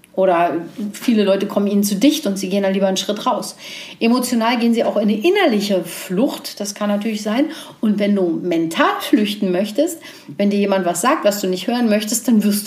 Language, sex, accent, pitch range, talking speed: German, female, German, 195-265 Hz, 215 wpm